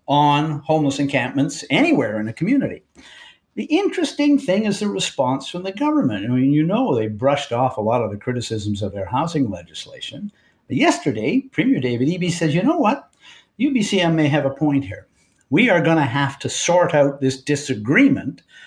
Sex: male